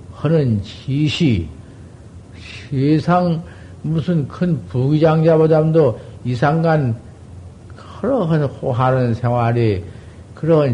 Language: Korean